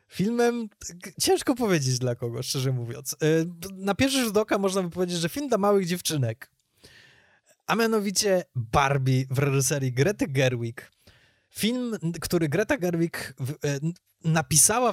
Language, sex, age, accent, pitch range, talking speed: Polish, male, 20-39, native, 130-175 Hz, 125 wpm